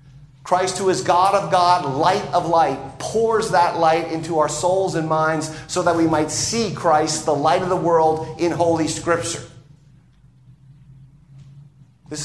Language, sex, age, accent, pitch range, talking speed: English, male, 50-69, American, 145-180 Hz, 155 wpm